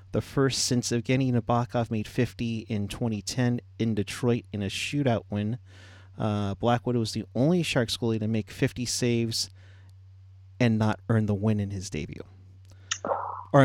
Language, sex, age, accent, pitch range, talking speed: English, male, 30-49, American, 100-125 Hz, 155 wpm